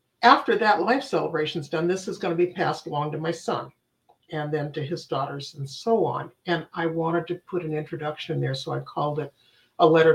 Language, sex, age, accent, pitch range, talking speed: English, male, 50-69, American, 150-180 Hz, 225 wpm